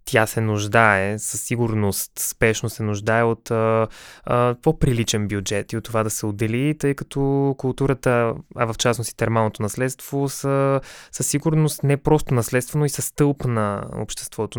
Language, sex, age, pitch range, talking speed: Bulgarian, male, 20-39, 115-135 Hz, 160 wpm